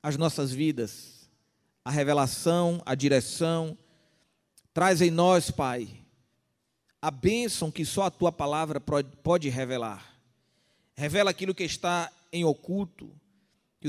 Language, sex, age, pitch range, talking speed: Portuguese, male, 40-59, 150-195 Hz, 115 wpm